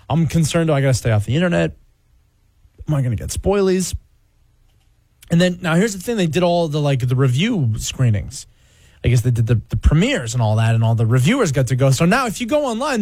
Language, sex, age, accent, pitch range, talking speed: English, male, 20-39, American, 115-185 Hz, 245 wpm